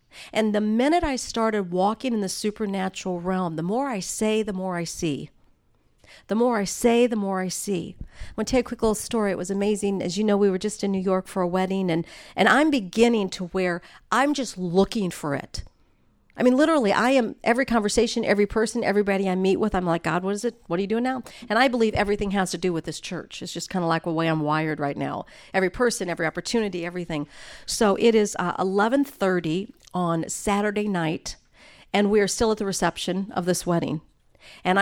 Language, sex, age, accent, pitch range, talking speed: English, female, 50-69, American, 180-235 Hz, 225 wpm